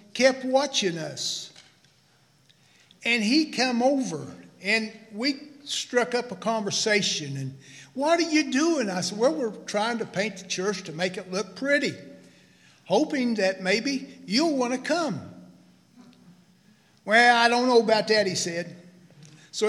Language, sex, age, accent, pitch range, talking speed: English, male, 50-69, American, 185-250 Hz, 145 wpm